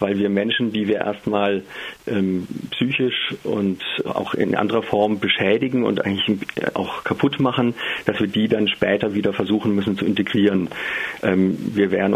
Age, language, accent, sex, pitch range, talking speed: 50-69, German, German, male, 100-110 Hz, 160 wpm